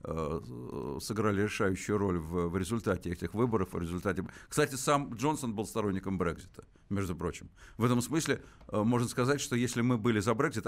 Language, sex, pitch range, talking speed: Russian, male, 105-130 Hz, 150 wpm